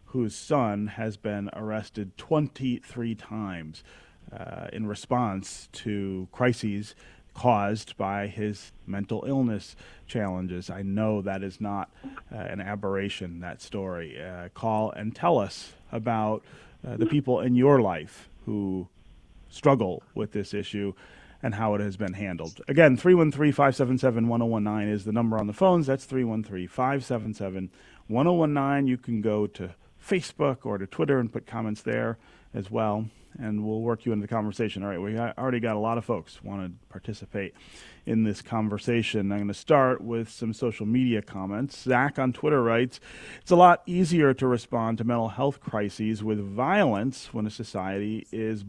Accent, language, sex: American, English, male